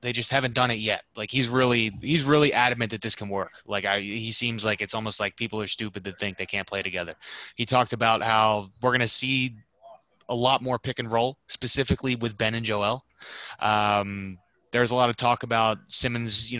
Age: 20-39